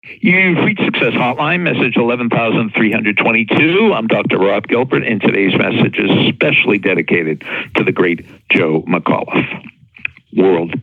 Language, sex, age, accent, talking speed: English, male, 60-79, American, 120 wpm